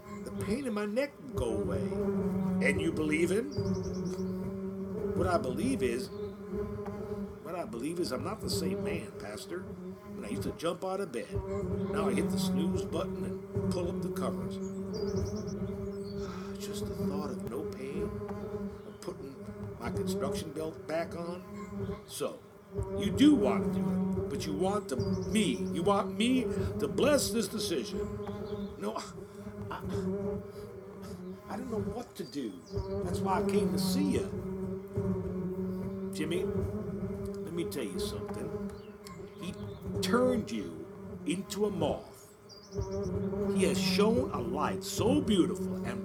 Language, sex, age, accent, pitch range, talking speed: English, male, 60-79, American, 185-205 Hz, 145 wpm